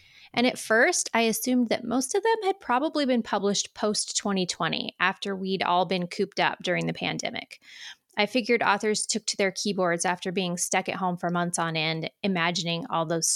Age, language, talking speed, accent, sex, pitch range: 20-39, English, 190 wpm, American, female, 175-225 Hz